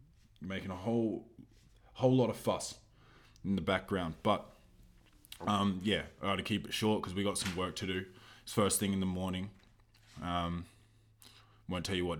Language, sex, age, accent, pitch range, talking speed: English, male, 20-39, Australian, 90-110 Hz, 180 wpm